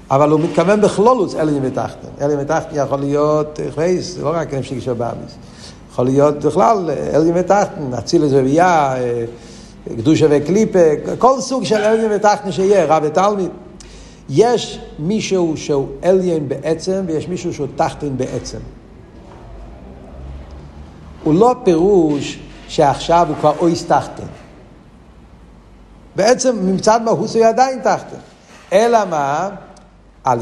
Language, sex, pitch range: Hebrew, male, 145-215 Hz